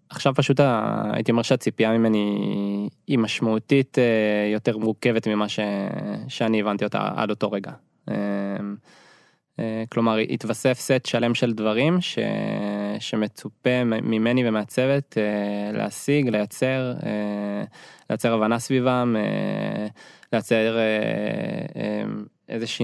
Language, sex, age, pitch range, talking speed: Hebrew, male, 20-39, 105-125 Hz, 95 wpm